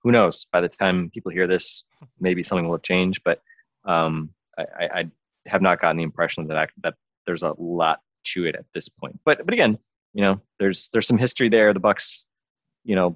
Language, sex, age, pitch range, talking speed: English, male, 20-39, 85-105 Hz, 220 wpm